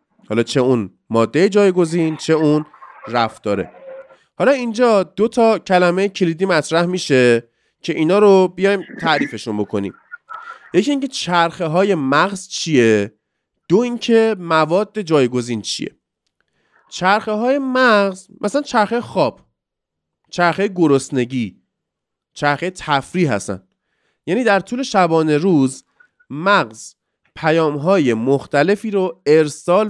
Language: Persian